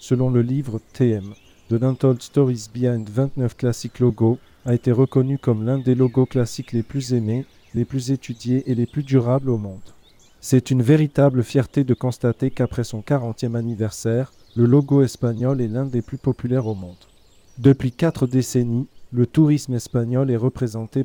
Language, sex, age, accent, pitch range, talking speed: French, male, 40-59, French, 115-135 Hz, 170 wpm